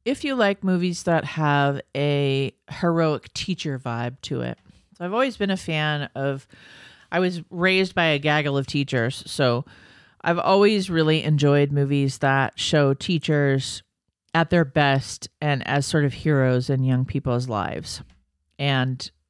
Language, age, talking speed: English, 40-59, 150 wpm